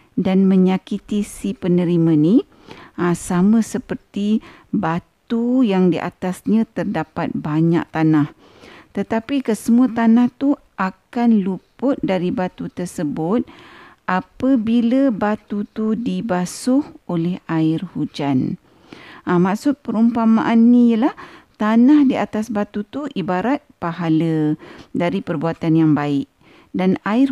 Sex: female